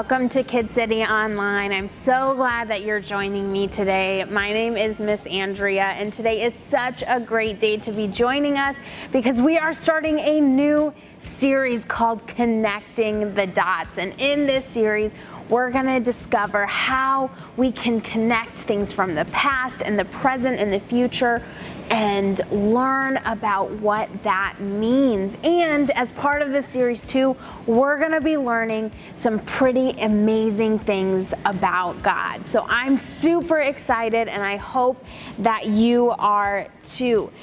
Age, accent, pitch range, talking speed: 20-39, American, 205-260 Hz, 155 wpm